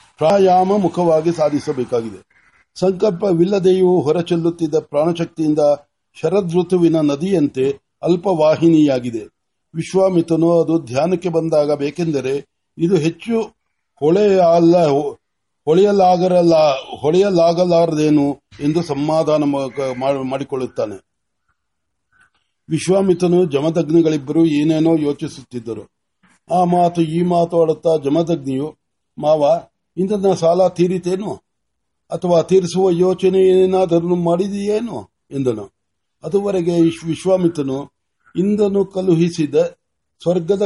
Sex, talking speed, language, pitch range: male, 35 wpm, Marathi, 155-185 Hz